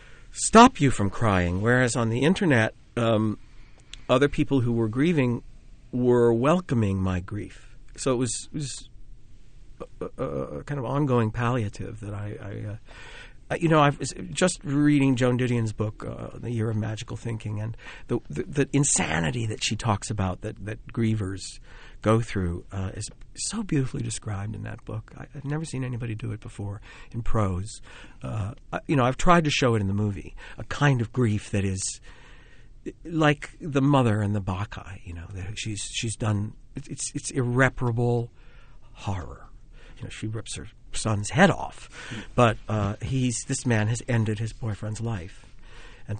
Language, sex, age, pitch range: English, male, 50-69, 105-130 Hz